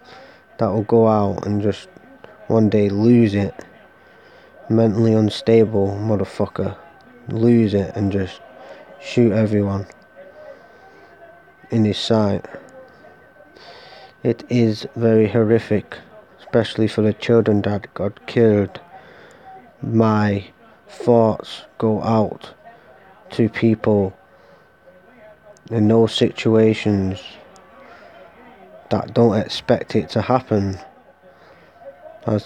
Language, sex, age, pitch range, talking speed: English, male, 20-39, 100-115 Hz, 90 wpm